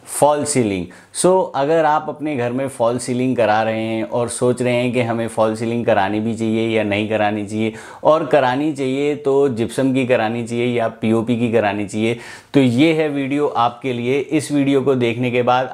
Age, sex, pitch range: 30-49, male, 100-125 Hz